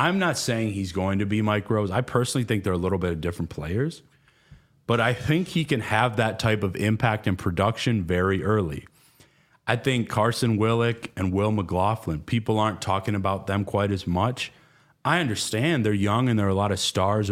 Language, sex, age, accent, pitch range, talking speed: English, male, 30-49, American, 100-135 Hz, 205 wpm